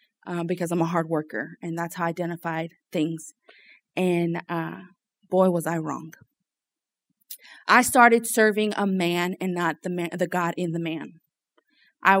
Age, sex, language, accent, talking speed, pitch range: 20-39, female, English, American, 155 wpm, 170-200 Hz